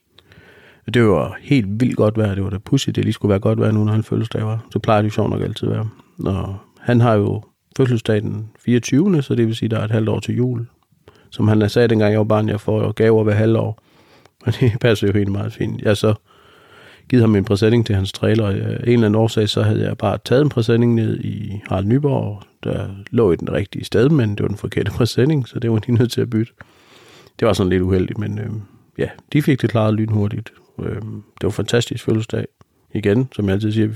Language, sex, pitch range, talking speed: Danish, male, 105-120 Hz, 235 wpm